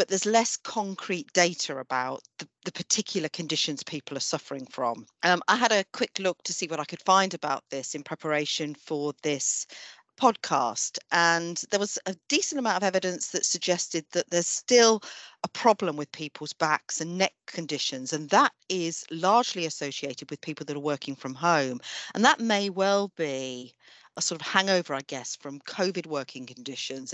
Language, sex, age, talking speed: English, female, 40-59, 180 wpm